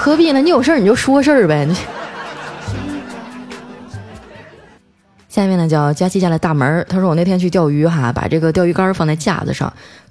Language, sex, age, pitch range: Chinese, female, 20-39, 155-220 Hz